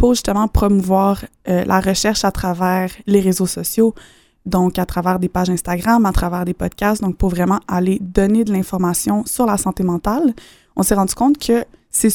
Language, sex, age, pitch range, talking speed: French, female, 20-39, 185-215 Hz, 190 wpm